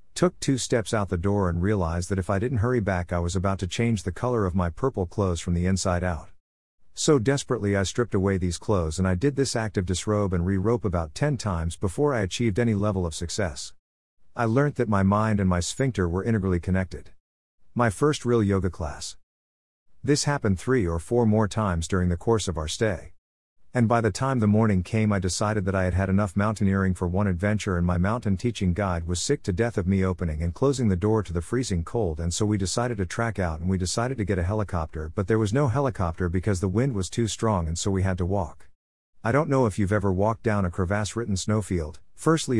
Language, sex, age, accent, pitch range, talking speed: English, male, 50-69, American, 90-115 Hz, 235 wpm